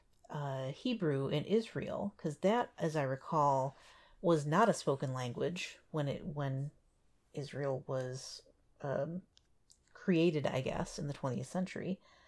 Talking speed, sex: 130 wpm, female